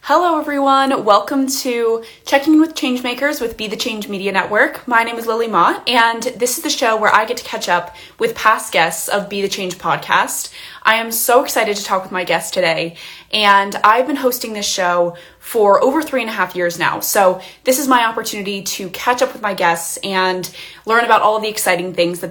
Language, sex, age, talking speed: English, female, 20-39, 215 wpm